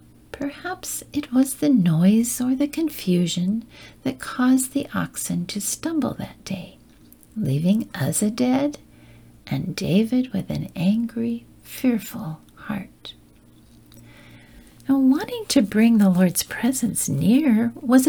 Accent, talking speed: American, 115 wpm